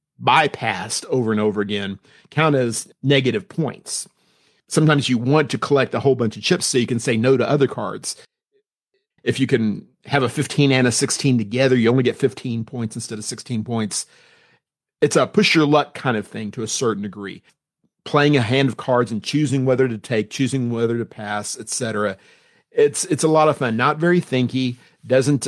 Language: English